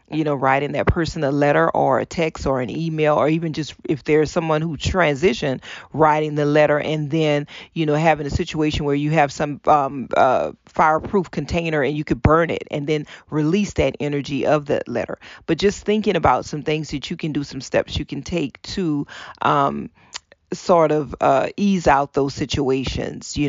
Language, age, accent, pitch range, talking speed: English, 40-59, American, 145-160 Hz, 195 wpm